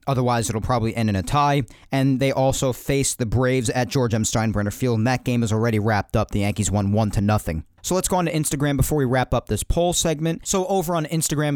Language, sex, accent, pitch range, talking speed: English, male, American, 120-155 Hz, 240 wpm